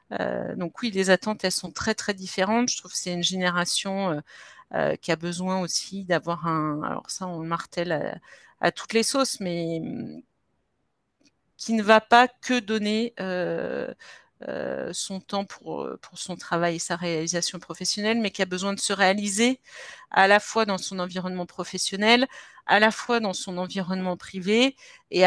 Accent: French